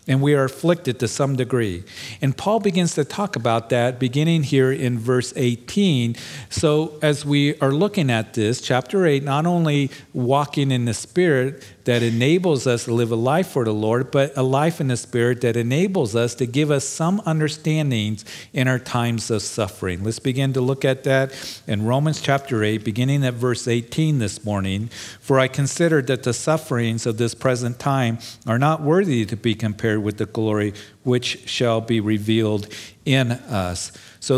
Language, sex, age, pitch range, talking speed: English, male, 50-69, 115-145 Hz, 185 wpm